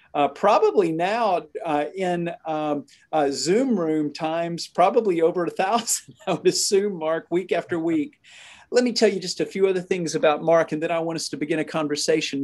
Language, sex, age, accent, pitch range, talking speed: English, male, 40-59, American, 150-205 Hz, 200 wpm